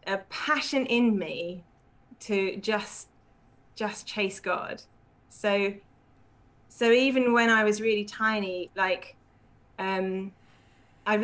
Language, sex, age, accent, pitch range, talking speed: English, female, 20-39, British, 175-215 Hz, 105 wpm